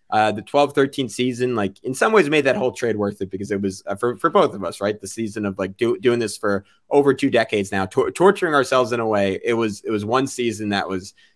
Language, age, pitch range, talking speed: English, 20-39, 110-140 Hz, 270 wpm